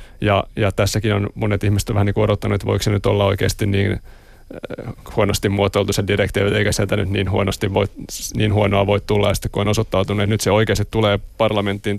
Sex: male